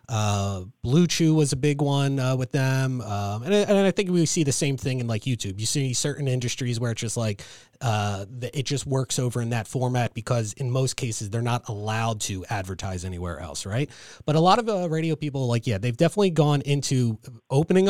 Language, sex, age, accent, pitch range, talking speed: English, male, 30-49, American, 115-155 Hz, 220 wpm